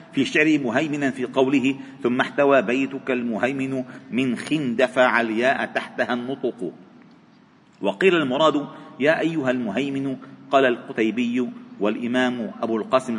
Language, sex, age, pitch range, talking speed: Arabic, male, 50-69, 130-165 Hz, 110 wpm